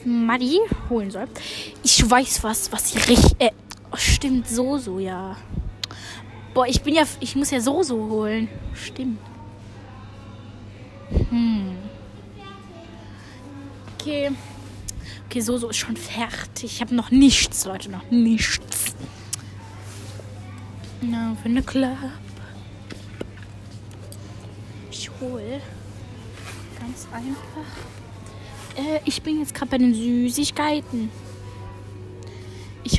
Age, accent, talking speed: 20-39, German, 105 wpm